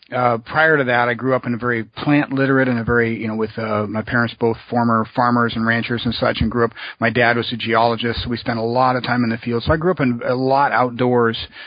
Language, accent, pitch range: English, American, 115-135 Hz